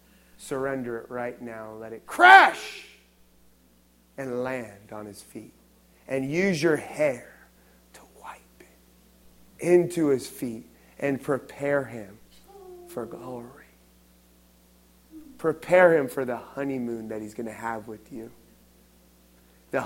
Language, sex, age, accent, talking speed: English, male, 30-49, American, 120 wpm